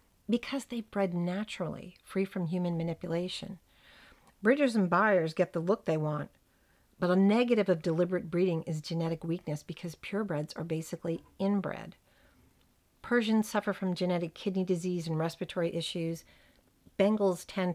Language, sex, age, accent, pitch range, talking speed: English, female, 50-69, American, 165-205 Hz, 140 wpm